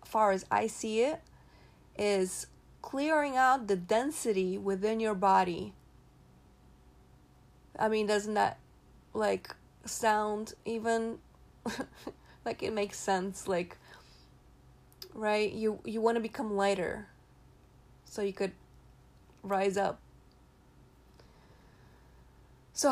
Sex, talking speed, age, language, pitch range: female, 100 wpm, 30-49, English, 200-250 Hz